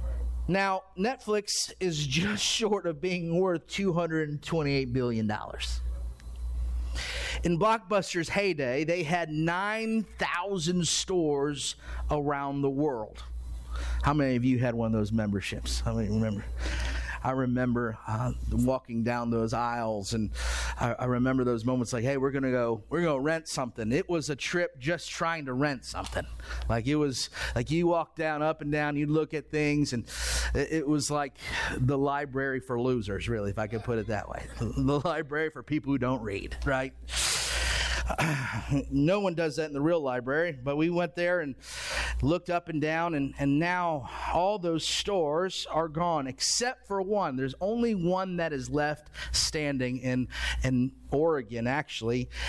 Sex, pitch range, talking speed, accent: male, 115-170 Hz, 160 wpm, American